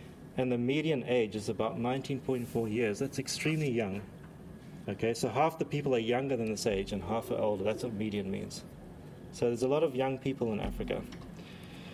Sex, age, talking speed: male, 30-49, 190 wpm